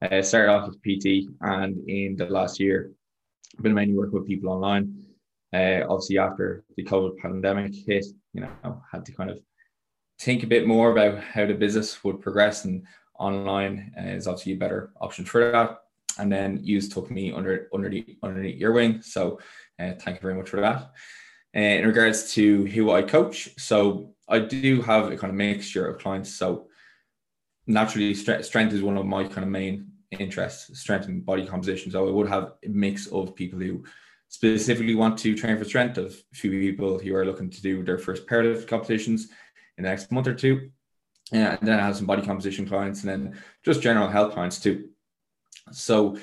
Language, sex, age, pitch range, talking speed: English, male, 20-39, 95-110 Hz, 200 wpm